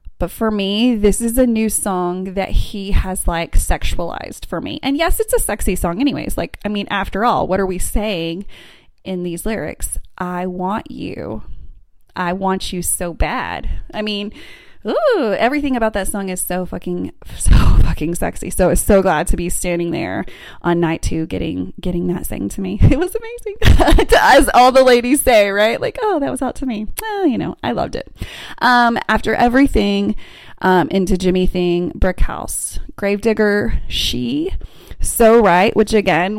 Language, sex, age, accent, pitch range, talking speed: English, female, 20-39, American, 180-235 Hz, 180 wpm